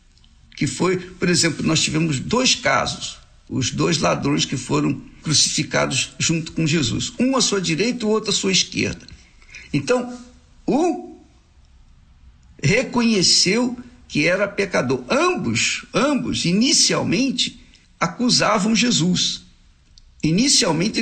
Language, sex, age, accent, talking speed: Portuguese, male, 60-79, Brazilian, 110 wpm